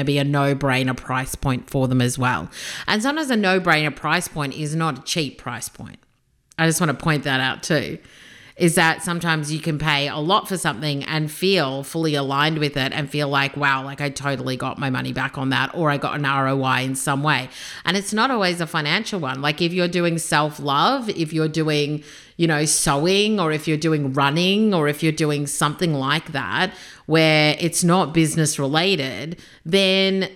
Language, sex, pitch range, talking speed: English, female, 140-170 Hz, 205 wpm